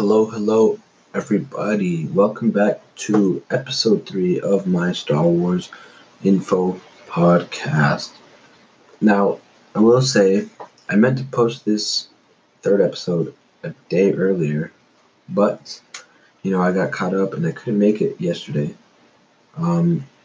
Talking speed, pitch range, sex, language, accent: 125 wpm, 85-110 Hz, male, English, American